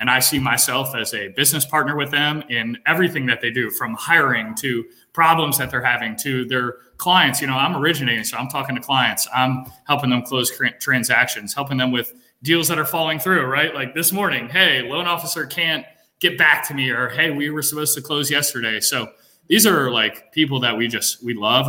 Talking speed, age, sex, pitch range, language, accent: 215 wpm, 20-39, male, 115-150 Hz, English, American